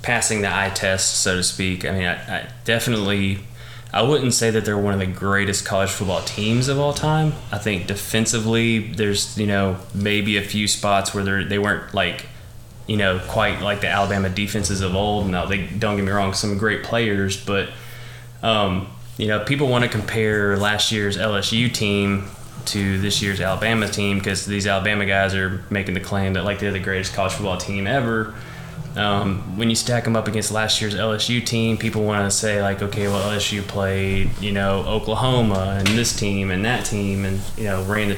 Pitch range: 100-115 Hz